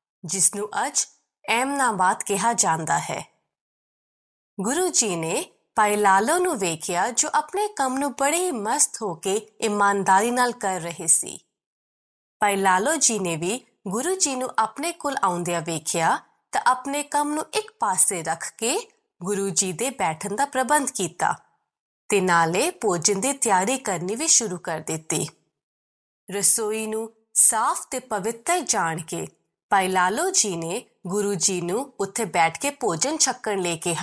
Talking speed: 90 wpm